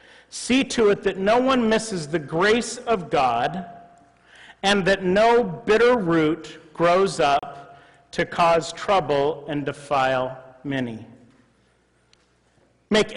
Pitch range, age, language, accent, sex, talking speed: 155-215 Hz, 40-59, English, American, male, 115 wpm